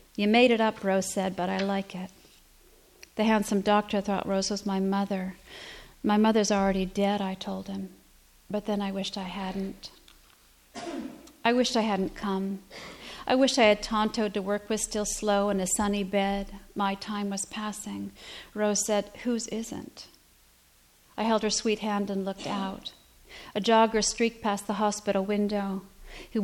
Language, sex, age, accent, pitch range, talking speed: English, female, 40-59, American, 195-215 Hz, 170 wpm